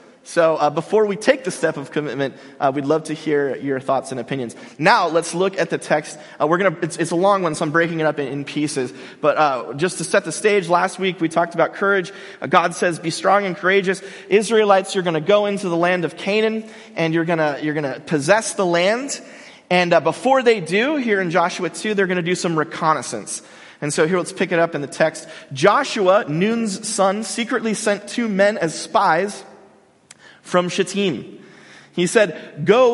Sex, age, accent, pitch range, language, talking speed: male, 30-49, American, 160-215 Hz, English, 205 wpm